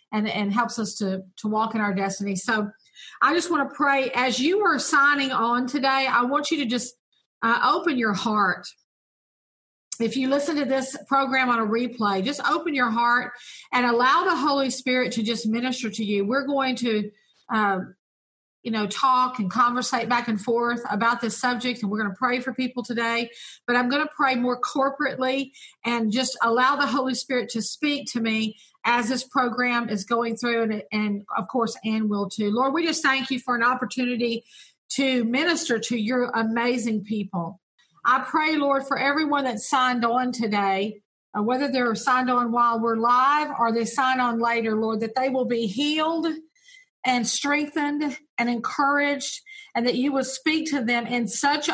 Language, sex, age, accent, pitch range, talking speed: English, female, 50-69, American, 230-280 Hz, 190 wpm